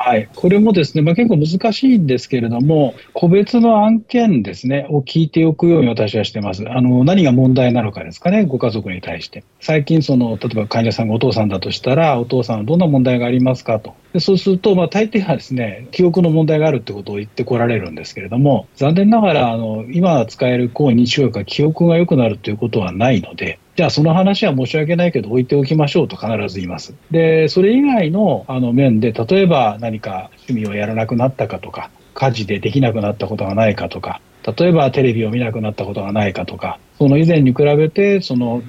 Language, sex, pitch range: Japanese, male, 110-165 Hz